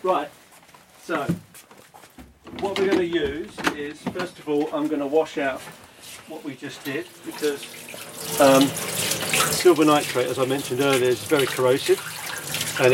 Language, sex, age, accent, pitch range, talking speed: English, male, 40-59, British, 130-155 Hz, 150 wpm